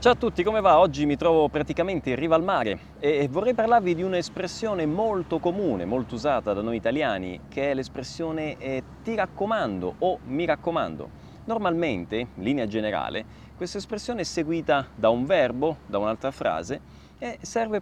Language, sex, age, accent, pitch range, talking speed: Italian, male, 30-49, native, 135-205 Hz, 165 wpm